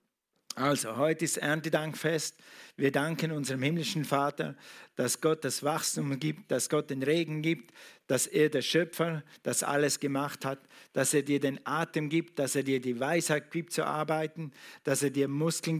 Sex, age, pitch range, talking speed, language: male, 50-69, 140-165 Hz, 170 wpm, German